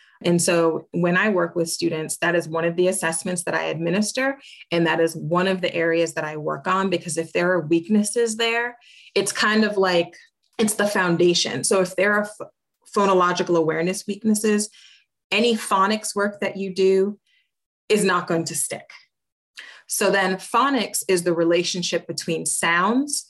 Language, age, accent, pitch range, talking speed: English, 30-49, American, 170-210 Hz, 170 wpm